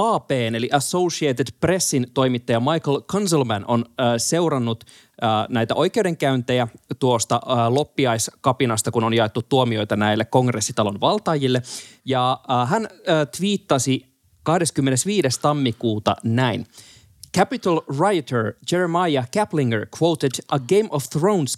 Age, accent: 30-49, native